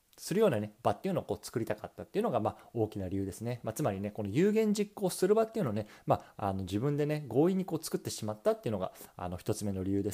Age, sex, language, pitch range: 20-39, male, Japanese, 105-175 Hz